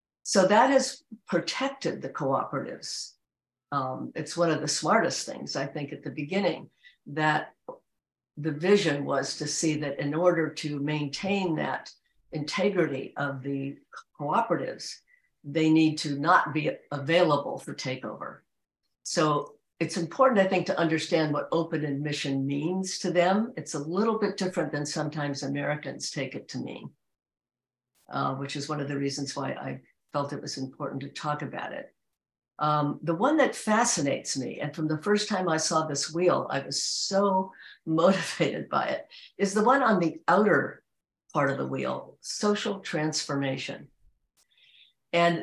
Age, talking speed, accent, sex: 60-79, 155 wpm, American, female